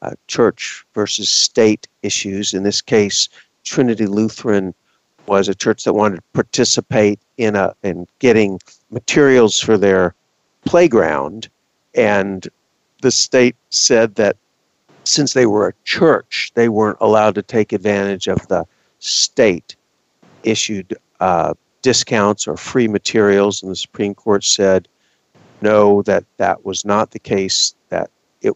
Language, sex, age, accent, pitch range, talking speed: English, male, 50-69, American, 100-125 Hz, 130 wpm